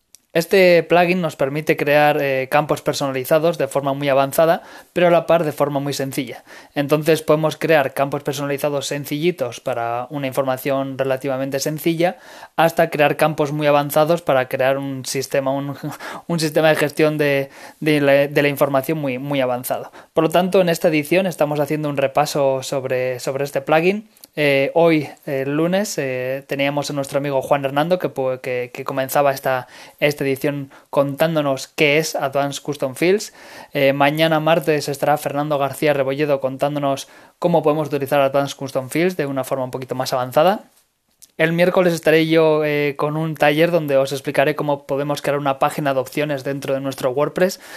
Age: 20-39